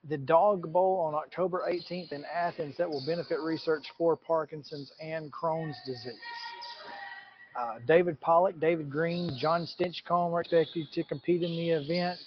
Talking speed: 150 wpm